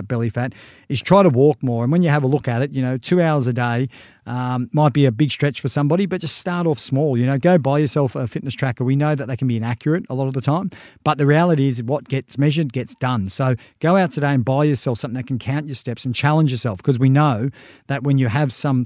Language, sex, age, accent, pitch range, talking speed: English, male, 40-59, Australian, 125-150 Hz, 275 wpm